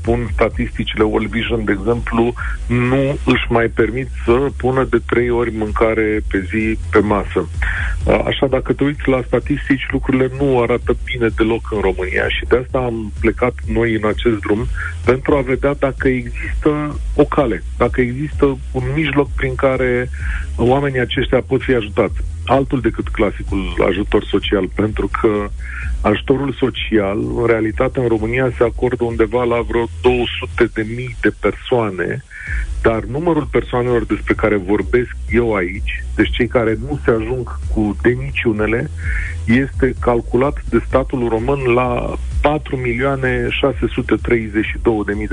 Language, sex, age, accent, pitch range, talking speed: Romanian, male, 40-59, native, 100-125 Hz, 140 wpm